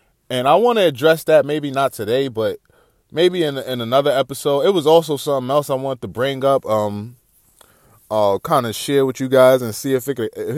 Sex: male